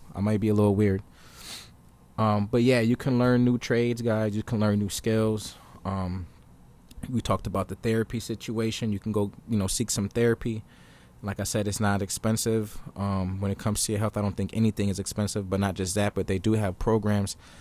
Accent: American